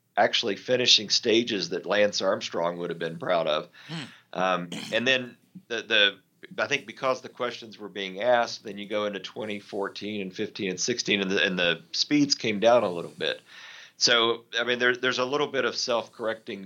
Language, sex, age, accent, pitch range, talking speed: English, male, 40-59, American, 90-115 Hz, 190 wpm